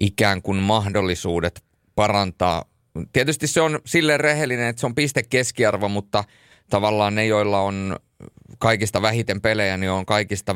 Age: 30-49